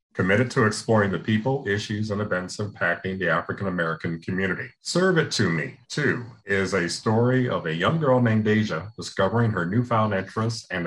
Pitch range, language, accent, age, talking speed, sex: 95-125 Hz, English, American, 40-59, 170 wpm, male